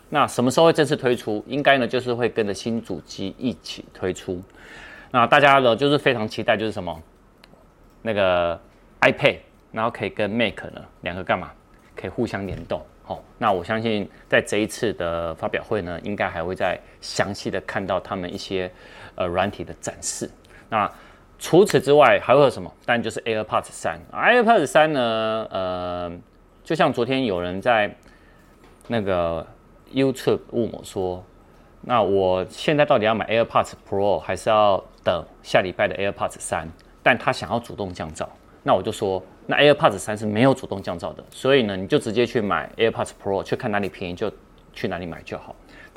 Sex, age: male, 30-49